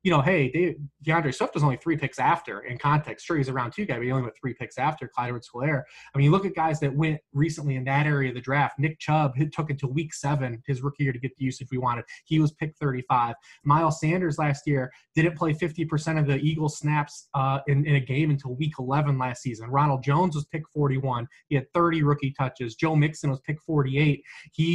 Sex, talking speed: male, 245 wpm